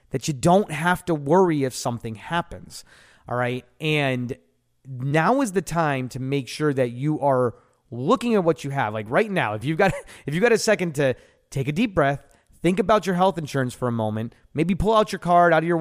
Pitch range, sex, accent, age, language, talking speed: 120-175 Hz, male, American, 30-49, English, 225 wpm